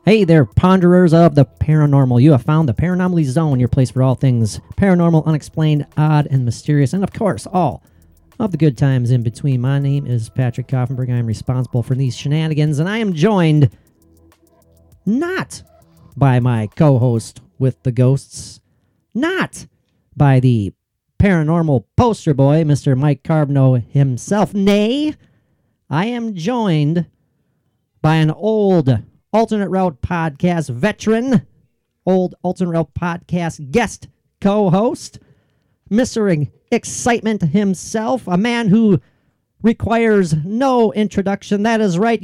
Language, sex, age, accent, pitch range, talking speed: English, male, 40-59, American, 130-200 Hz, 130 wpm